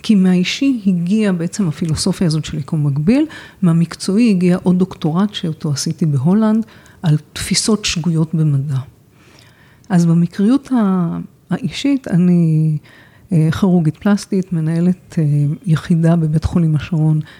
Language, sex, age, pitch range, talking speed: Hebrew, female, 50-69, 160-205 Hz, 105 wpm